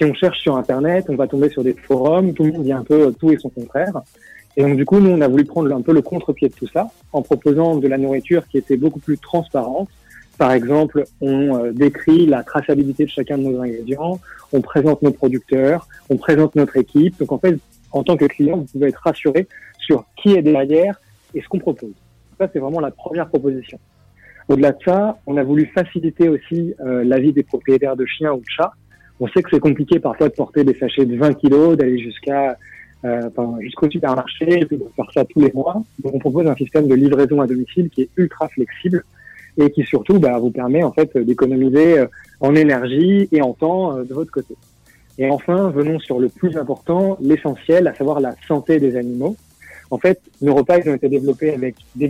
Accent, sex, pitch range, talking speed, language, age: French, male, 135-160 Hz, 220 wpm, French, 30-49